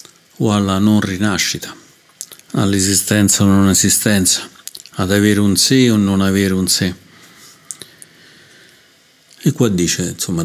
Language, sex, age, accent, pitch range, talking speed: Italian, male, 50-69, native, 95-105 Hz, 130 wpm